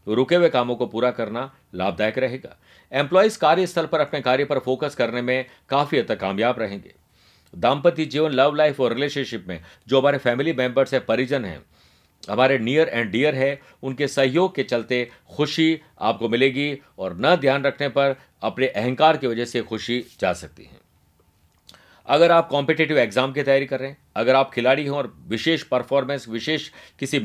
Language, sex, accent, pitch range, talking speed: Hindi, male, native, 120-150 Hz, 180 wpm